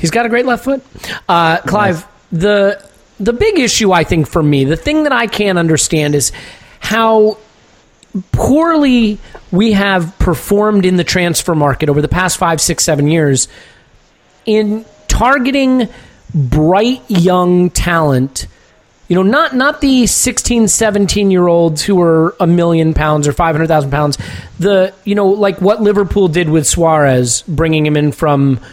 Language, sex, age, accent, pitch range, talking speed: English, male, 30-49, American, 150-205 Hz, 150 wpm